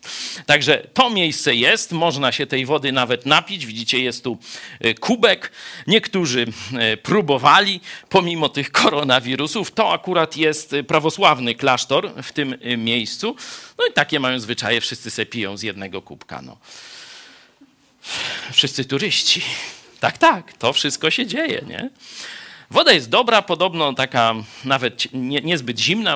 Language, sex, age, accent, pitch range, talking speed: Polish, male, 50-69, native, 125-165 Hz, 130 wpm